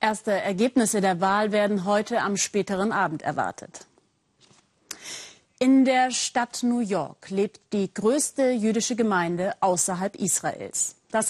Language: German